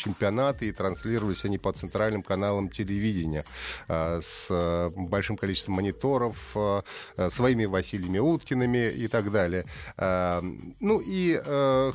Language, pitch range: Russian, 95-130 Hz